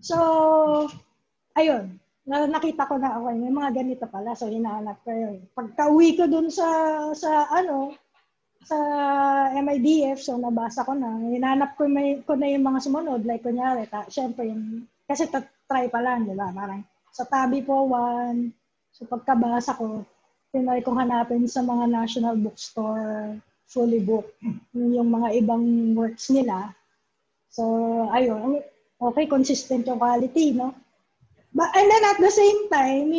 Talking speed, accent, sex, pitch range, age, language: 145 wpm, native, female, 240-315 Hz, 20-39, Filipino